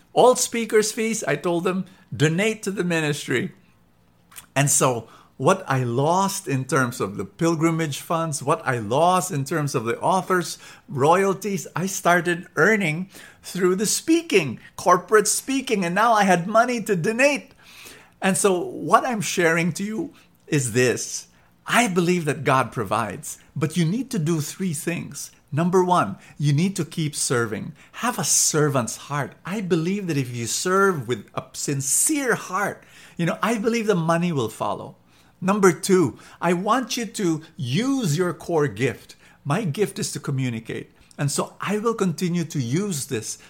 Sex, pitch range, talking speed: male, 135-190 Hz, 165 wpm